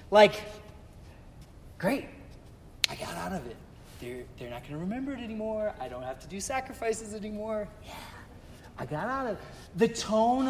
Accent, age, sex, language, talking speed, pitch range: American, 30-49, male, English, 170 wpm, 150-230 Hz